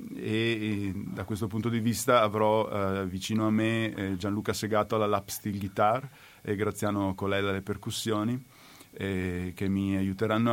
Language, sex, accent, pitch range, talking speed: Italian, male, native, 95-110 Hz, 160 wpm